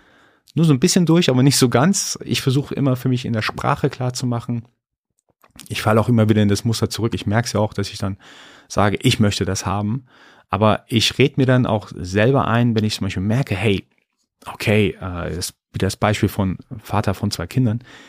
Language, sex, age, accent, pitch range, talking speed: German, male, 30-49, German, 100-125 Hz, 215 wpm